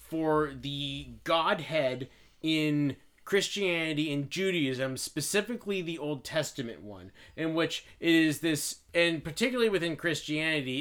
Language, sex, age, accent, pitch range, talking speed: English, male, 30-49, American, 135-160 Hz, 115 wpm